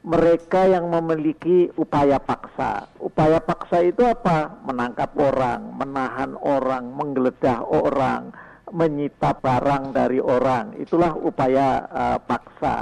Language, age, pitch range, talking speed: Indonesian, 50-69, 145-180 Hz, 105 wpm